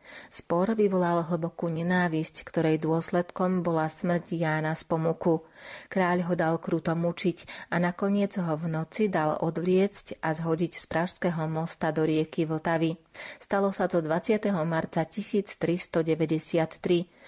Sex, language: female, Slovak